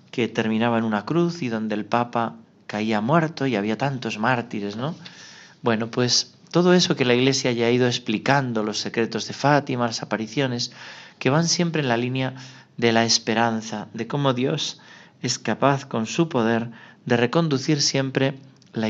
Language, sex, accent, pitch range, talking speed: Spanish, male, Spanish, 110-140 Hz, 170 wpm